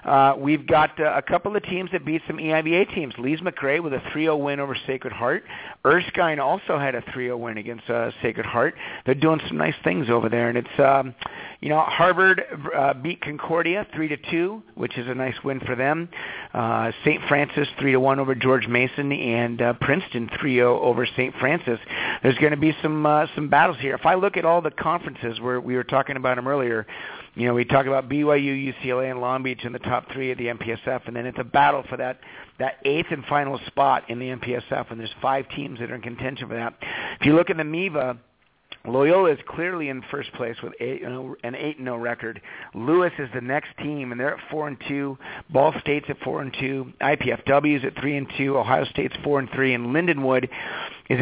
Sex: male